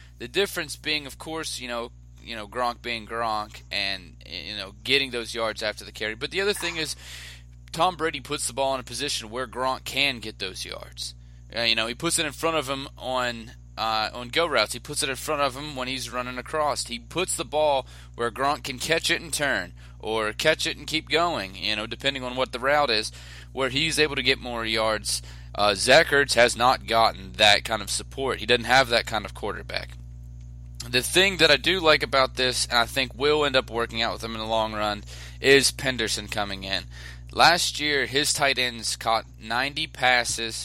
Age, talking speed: 20-39, 215 wpm